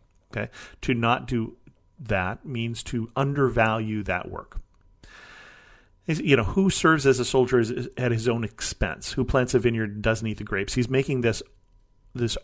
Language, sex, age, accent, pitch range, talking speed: English, male, 40-59, American, 110-130 Hz, 160 wpm